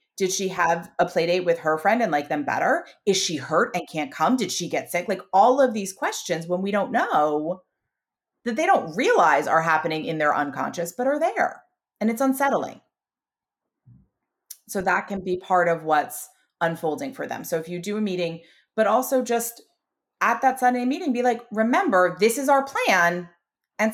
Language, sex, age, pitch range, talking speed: English, female, 30-49, 170-250 Hz, 195 wpm